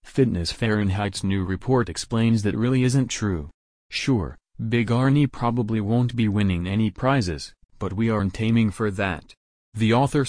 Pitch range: 95-115 Hz